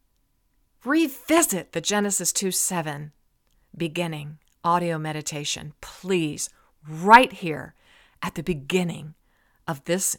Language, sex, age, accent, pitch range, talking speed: English, female, 50-69, American, 155-215 Hz, 90 wpm